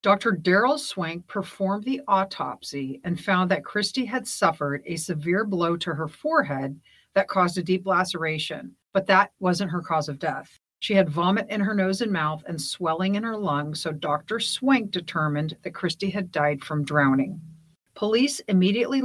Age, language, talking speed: 50-69, English, 175 wpm